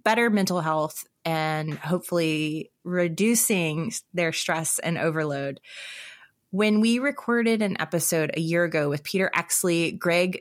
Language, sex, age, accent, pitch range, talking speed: English, female, 20-39, American, 160-195 Hz, 125 wpm